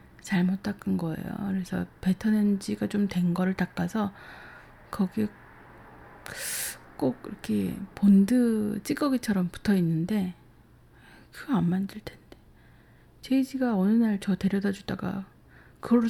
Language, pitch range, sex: Korean, 185-235 Hz, female